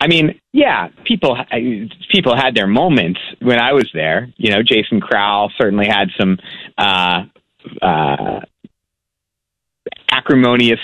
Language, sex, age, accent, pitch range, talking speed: English, male, 40-59, American, 105-135 Hz, 120 wpm